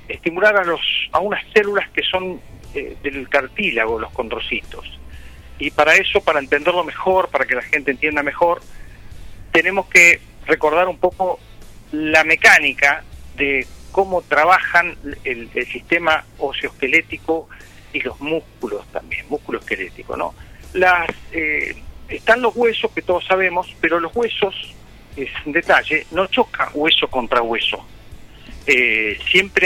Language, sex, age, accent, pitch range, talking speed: Spanish, male, 50-69, Argentinian, 120-185 Hz, 135 wpm